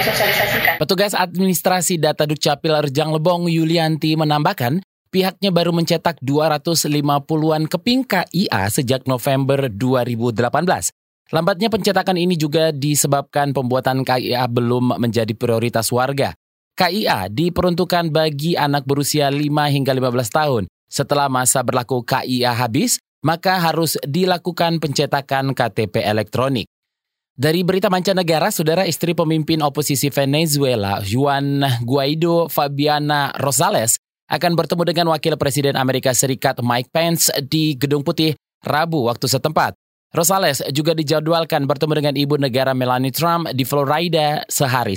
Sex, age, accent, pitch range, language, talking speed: male, 20-39, native, 135-165 Hz, Indonesian, 115 wpm